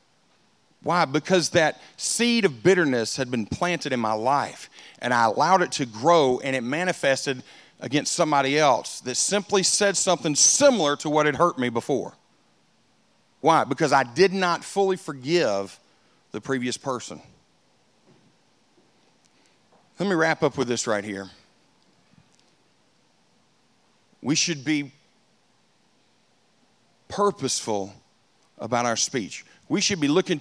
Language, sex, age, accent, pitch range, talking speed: English, male, 50-69, American, 130-180 Hz, 125 wpm